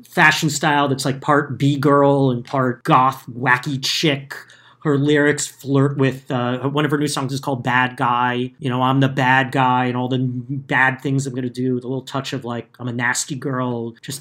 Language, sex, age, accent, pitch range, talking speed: English, male, 30-49, American, 125-150 Hz, 215 wpm